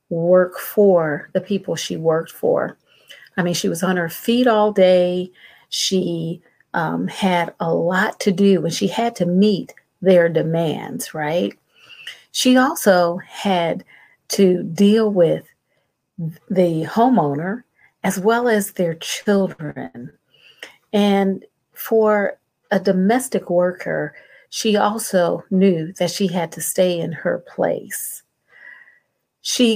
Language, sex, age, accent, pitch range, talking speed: English, female, 50-69, American, 170-210 Hz, 125 wpm